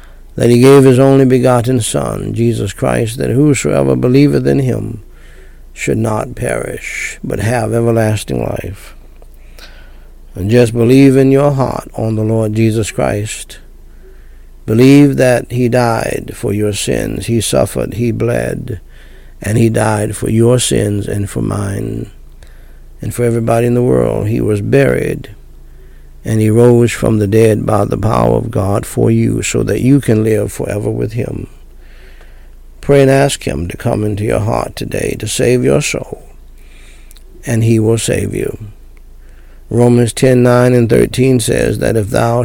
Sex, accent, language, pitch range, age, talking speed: male, American, English, 100-125 Hz, 60-79, 155 wpm